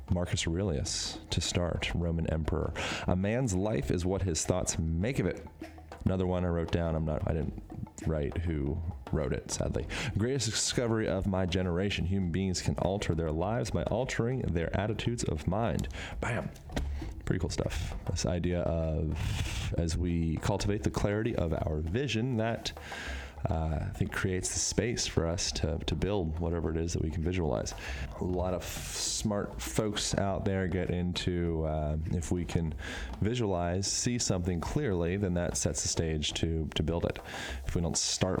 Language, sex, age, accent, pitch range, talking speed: English, male, 30-49, American, 80-100 Hz, 175 wpm